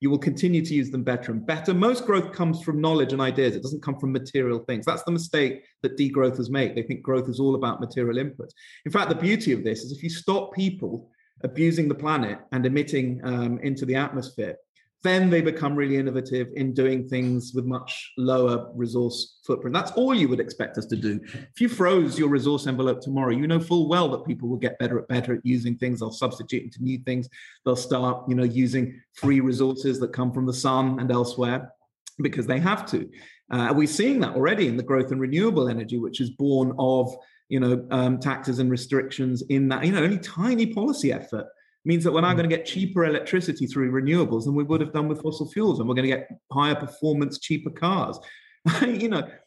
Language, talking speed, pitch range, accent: English, 220 wpm, 125-170 Hz, British